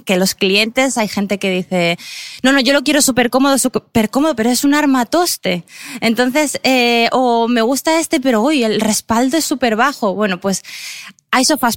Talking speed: 195 wpm